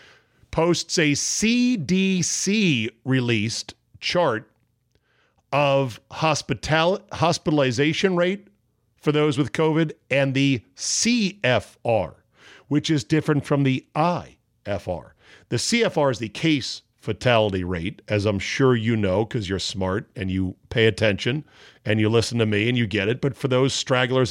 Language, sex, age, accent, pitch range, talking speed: English, male, 50-69, American, 110-145 Hz, 130 wpm